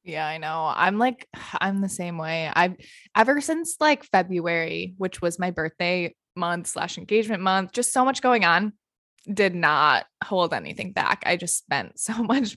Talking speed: 175 wpm